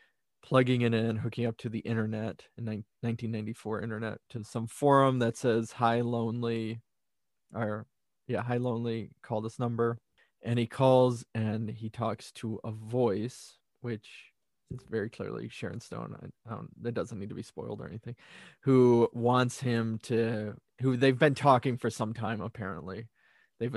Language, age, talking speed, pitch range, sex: English, 20-39, 160 wpm, 110-120 Hz, male